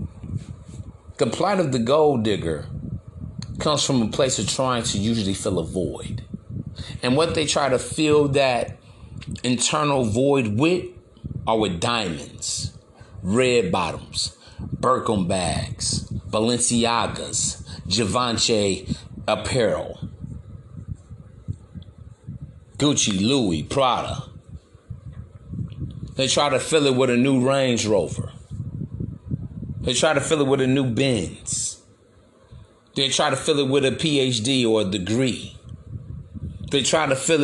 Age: 40-59